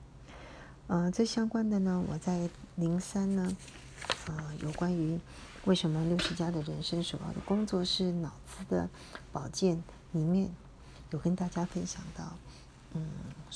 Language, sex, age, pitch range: Chinese, female, 40-59, 155-185 Hz